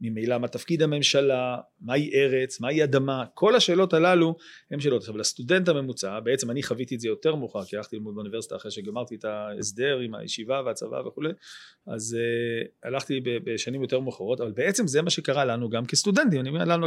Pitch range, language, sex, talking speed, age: 120-165 Hz, Hebrew, male, 185 wpm, 40-59